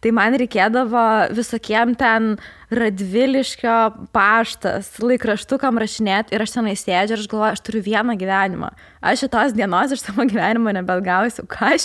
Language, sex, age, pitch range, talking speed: English, female, 20-39, 210-250 Hz, 145 wpm